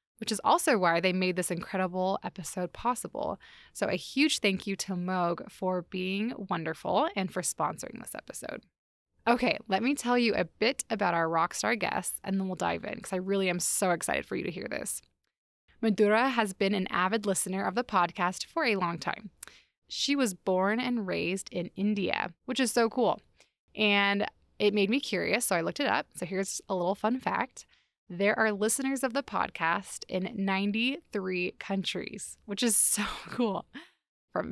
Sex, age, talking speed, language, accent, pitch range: female, 20-39, 185 wpm, English, American, 185-230 Hz